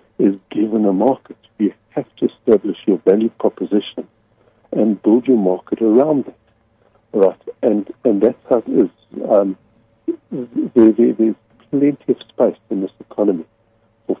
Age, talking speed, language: 60-79, 145 wpm, English